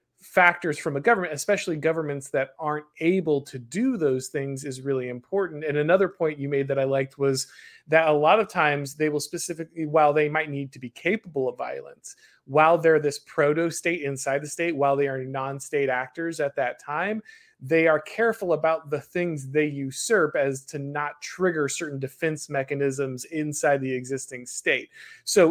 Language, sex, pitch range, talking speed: English, male, 140-170 Hz, 180 wpm